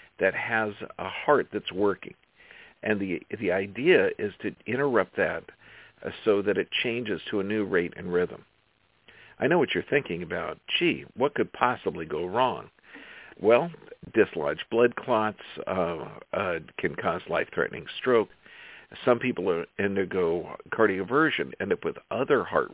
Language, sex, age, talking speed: English, male, 50-69, 145 wpm